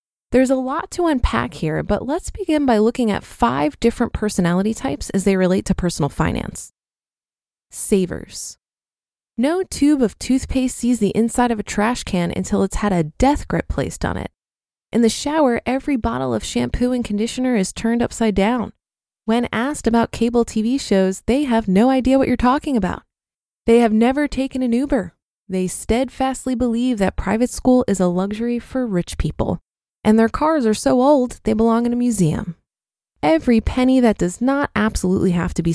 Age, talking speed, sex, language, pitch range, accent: 20-39, 180 wpm, female, English, 200-255 Hz, American